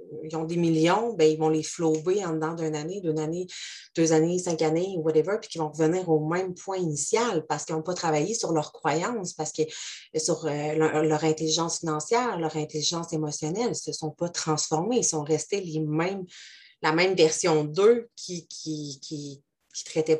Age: 30-49